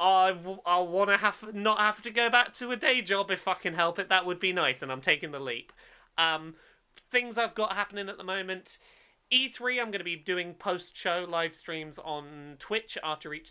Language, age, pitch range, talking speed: English, 30-49, 150-215 Hz, 220 wpm